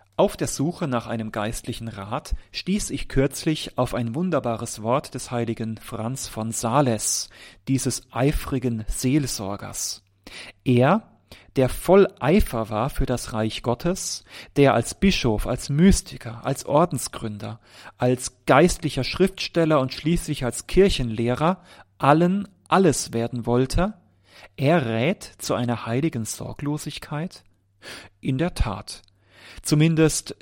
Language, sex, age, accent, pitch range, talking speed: German, male, 40-59, German, 110-150 Hz, 115 wpm